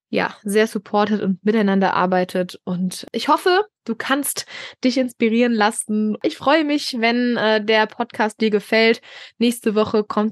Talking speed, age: 150 wpm, 20-39